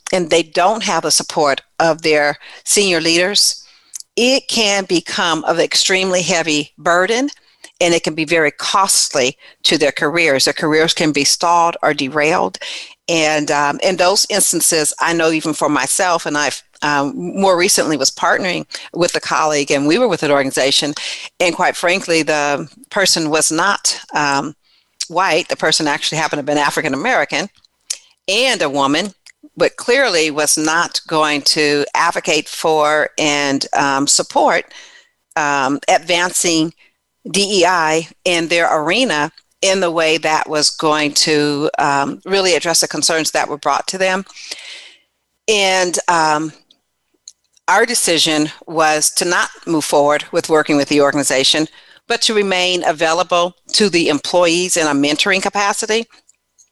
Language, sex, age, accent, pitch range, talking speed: English, female, 50-69, American, 150-185 Hz, 145 wpm